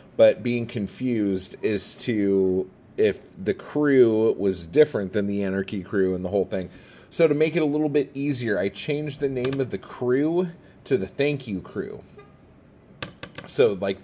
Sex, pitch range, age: male, 100-145 Hz, 30-49